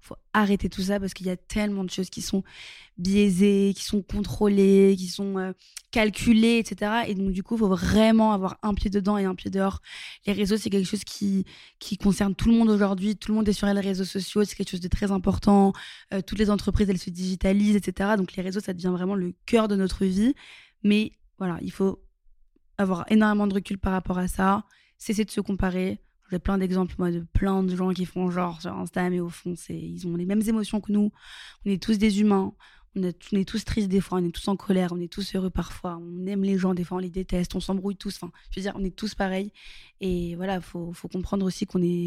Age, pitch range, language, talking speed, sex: 20-39, 180-205 Hz, French, 245 wpm, female